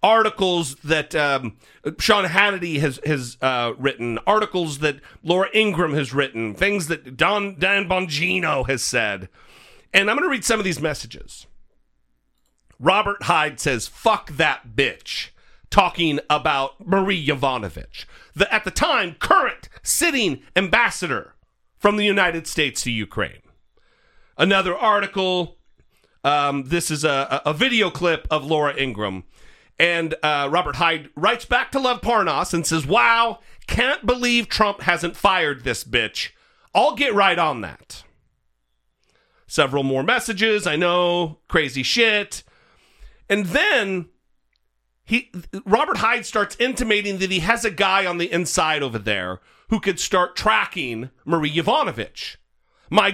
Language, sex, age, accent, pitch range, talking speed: English, male, 40-59, American, 140-200 Hz, 135 wpm